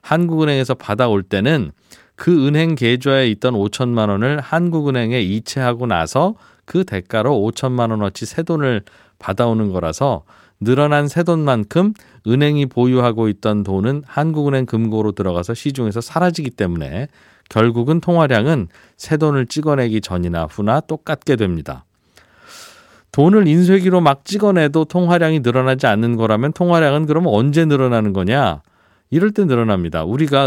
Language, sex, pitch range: Korean, male, 110-155 Hz